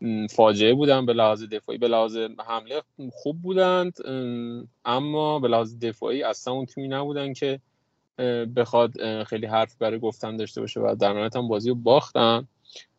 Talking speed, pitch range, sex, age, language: 150 wpm, 115-150 Hz, male, 20-39, Persian